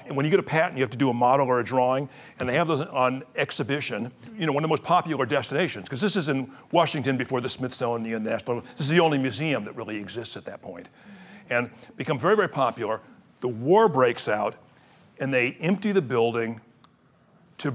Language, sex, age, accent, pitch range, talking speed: English, male, 60-79, American, 115-150 Hz, 215 wpm